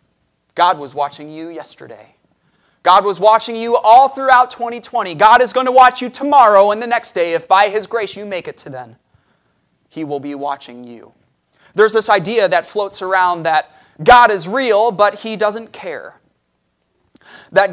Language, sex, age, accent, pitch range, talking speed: English, male, 30-49, American, 150-230 Hz, 175 wpm